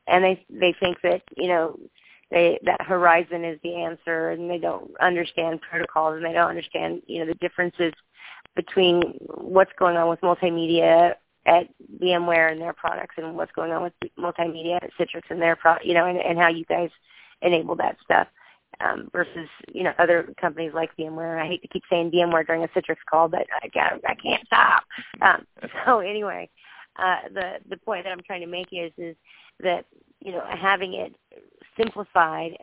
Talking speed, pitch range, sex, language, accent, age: 190 wpm, 165-185 Hz, female, English, American, 30-49